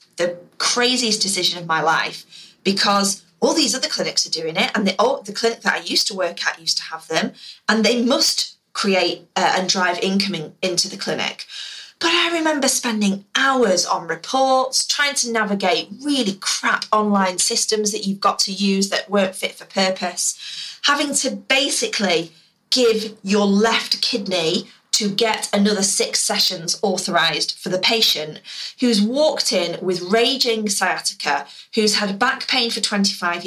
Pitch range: 185-235 Hz